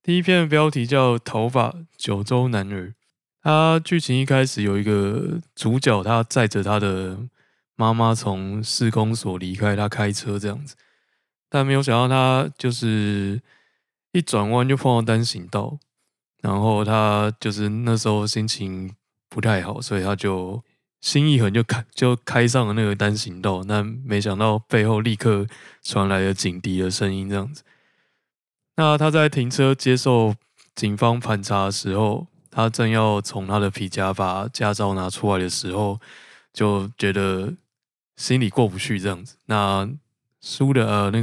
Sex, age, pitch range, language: male, 20-39, 100-125 Hz, Chinese